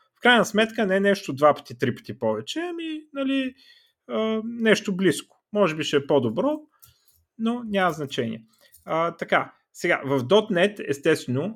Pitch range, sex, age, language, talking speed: 130-205 Hz, male, 30-49, Bulgarian, 150 wpm